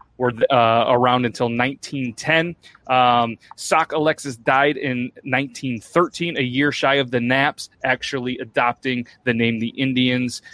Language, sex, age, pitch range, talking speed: English, male, 30-49, 125-155 Hz, 130 wpm